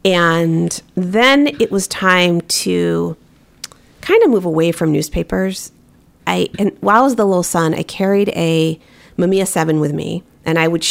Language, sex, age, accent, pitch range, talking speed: English, female, 40-59, American, 150-195 Hz, 165 wpm